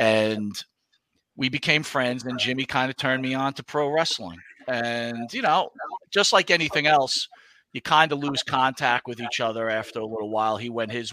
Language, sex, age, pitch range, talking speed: English, male, 40-59, 115-145 Hz, 195 wpm